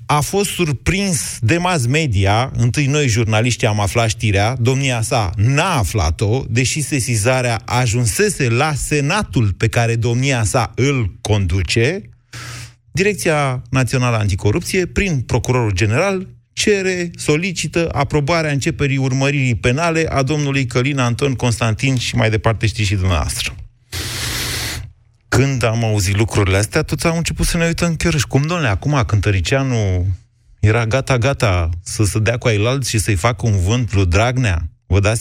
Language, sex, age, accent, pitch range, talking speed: Romanian, male, 30-49, native, 105-135 Hz, 140 wpm